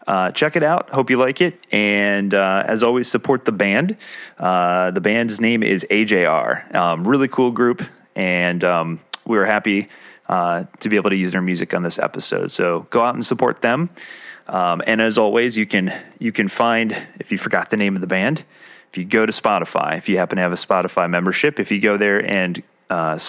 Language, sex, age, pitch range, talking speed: English, male, 30-49, 90-125 Hz, 215 wpm